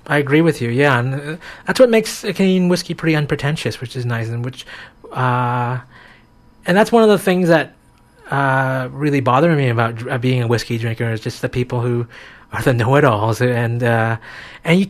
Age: 30-49